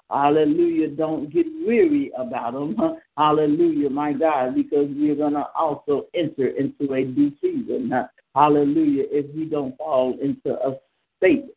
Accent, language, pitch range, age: American, English, 130-160 Hz, 60-79